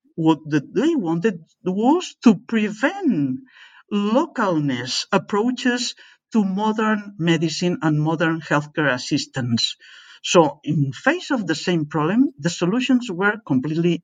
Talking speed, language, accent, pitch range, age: 110 wpm, English, Spanish, 165-250 Hz, 50-69